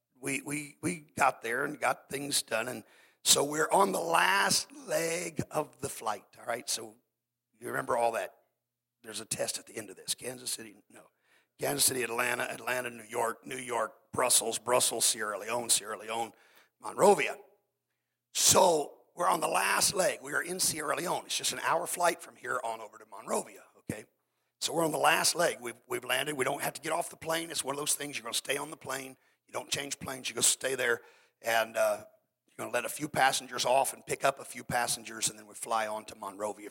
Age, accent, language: 50-69, American, English